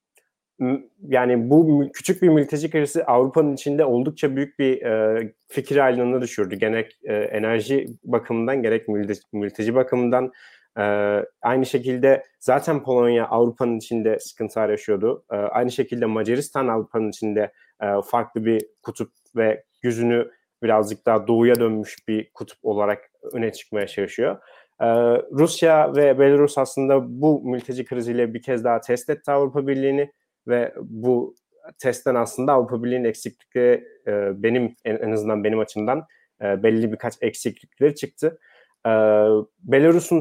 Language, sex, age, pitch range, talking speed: Turkish, male, 30-49, 110-140 Hz, 120 wpm